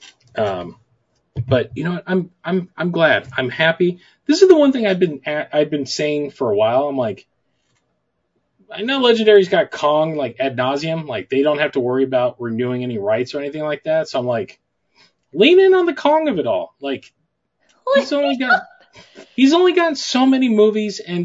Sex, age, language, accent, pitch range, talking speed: male, 30-49, English, American, 145-215 Hz, 200 wpm